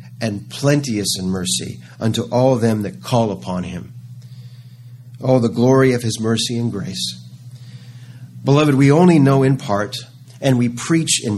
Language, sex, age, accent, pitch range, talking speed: English, male, 40-59, American, 105-125 Hz, 155 wpm